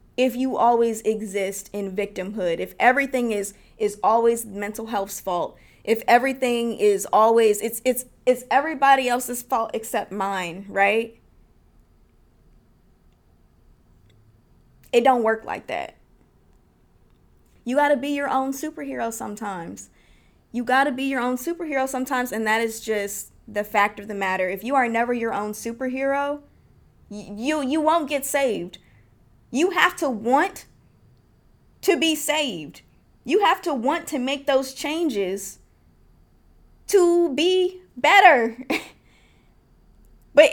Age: 20-39